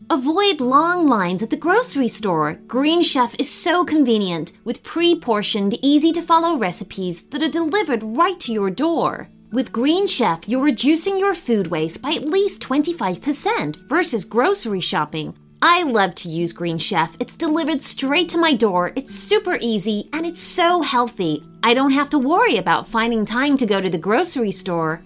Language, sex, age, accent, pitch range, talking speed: English, female, 30-49, American, 200-325 Hz, 170 wpm